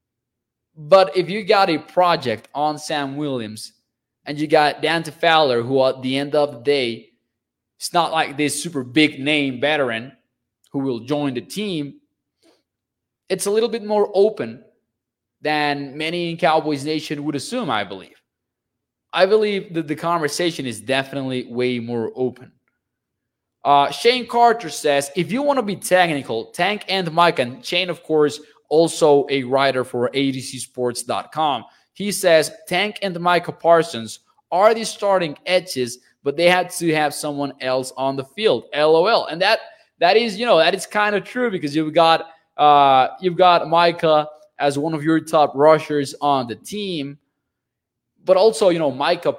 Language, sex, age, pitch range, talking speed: English, male, 20-39, 130-170 Hz, 160 wpm